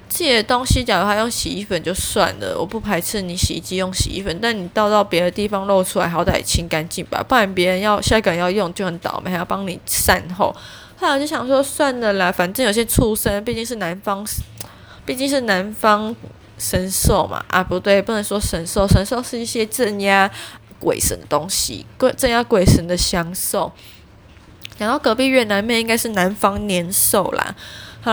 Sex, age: female, 20-39